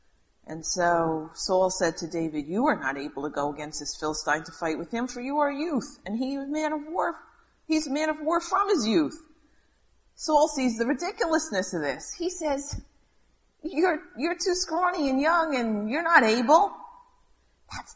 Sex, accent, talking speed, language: female, American, 195 wpm, English